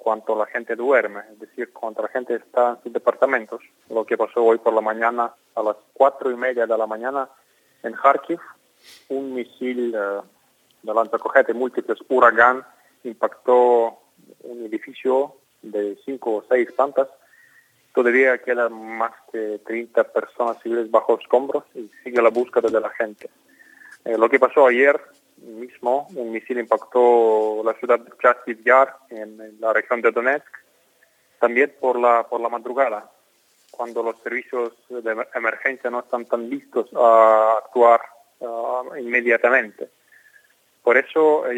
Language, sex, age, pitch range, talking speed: Spanish, male, 30-49, 115-130 Hz, 145 wpm